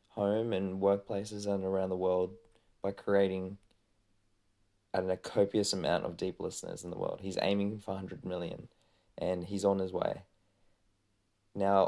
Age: 20-39